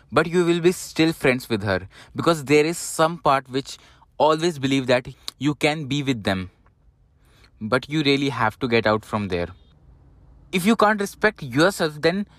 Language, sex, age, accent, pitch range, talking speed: English, male, 20-39, Indian, 110-160 Hz, 180 wpm